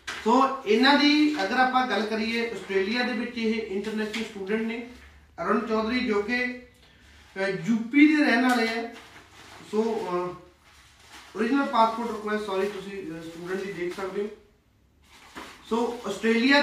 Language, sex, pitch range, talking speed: Punjabi, male, 200-245 Hz, 130 wpm